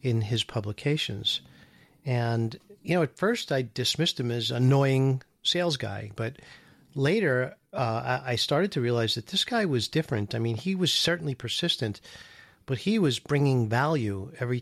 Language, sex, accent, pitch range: English, male, American, 115-145 Hz